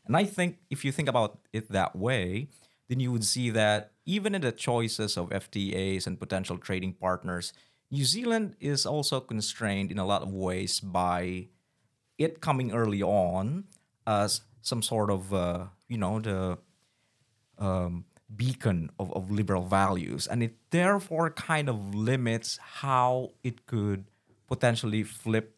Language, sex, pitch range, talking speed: English, male, 100-135 Hz, 150 wpm